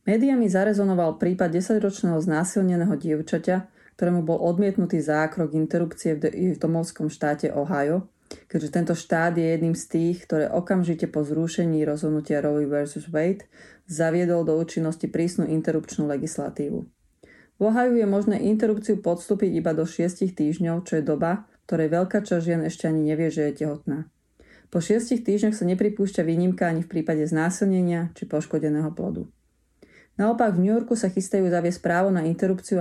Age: 30-49